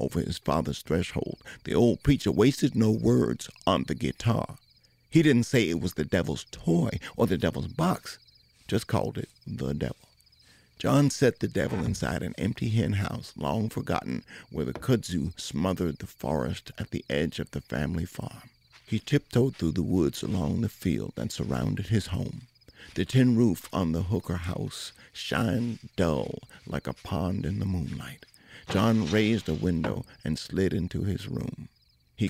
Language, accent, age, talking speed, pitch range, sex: English, American, 50-69, 170 wpm, 85-125 Hz, male